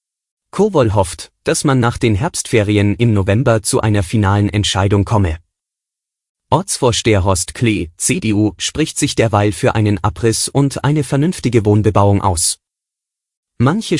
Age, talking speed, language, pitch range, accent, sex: 30-49, 130 wpm, German, 100-120 Hz, German, male